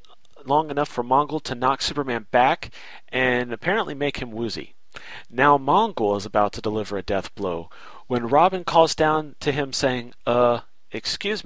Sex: male